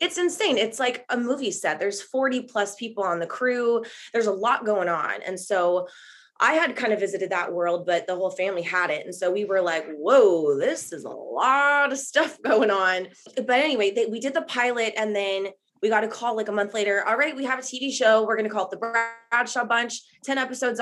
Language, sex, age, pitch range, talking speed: English, female, 20-39, 180-240 Hz, 235 wpm